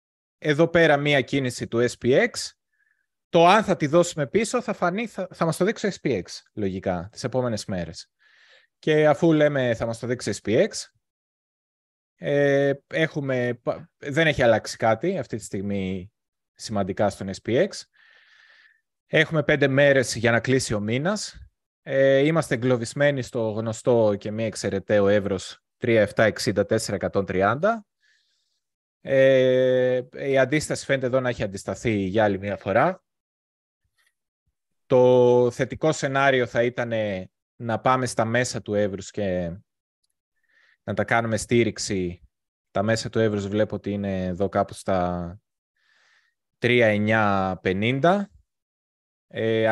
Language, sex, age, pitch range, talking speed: Greek, male, 20-39, 105-145 Hz, 125 wpm